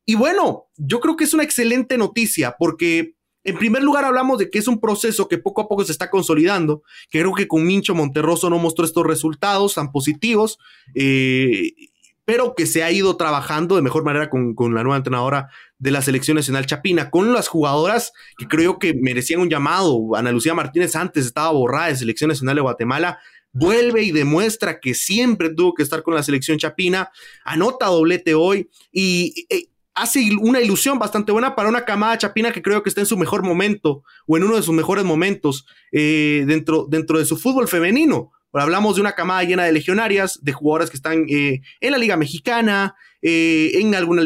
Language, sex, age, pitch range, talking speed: English, male, 30-49, 140-205 Hz, 195 wpm